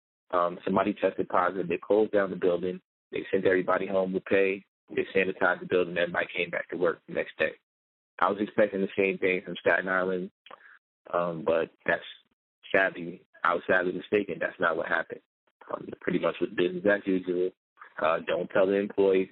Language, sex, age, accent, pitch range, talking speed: English, male, 30-49, American, 90-100 Hz, 185 wpm